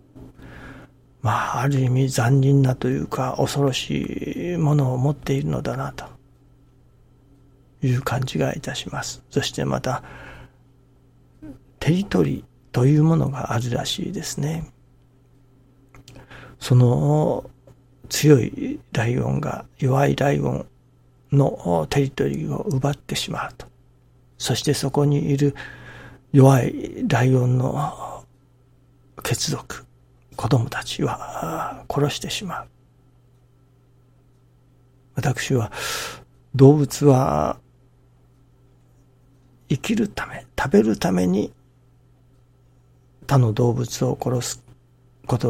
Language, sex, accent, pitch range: Japanese, male, native, 125-135 Hz